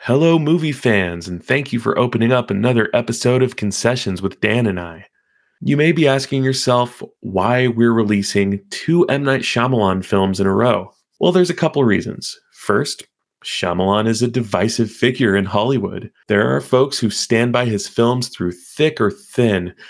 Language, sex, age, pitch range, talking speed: English, male, 30-49, 100-125 Hz, 180 wpm